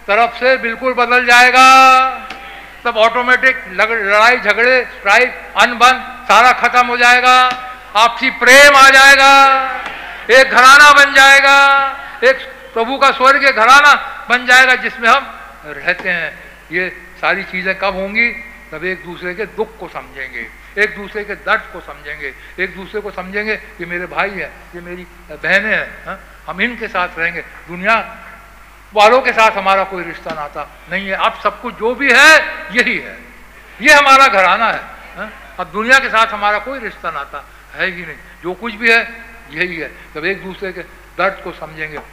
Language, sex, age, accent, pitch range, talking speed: English, male, 60-79, Indian, 180-250 Hz, 160 wpm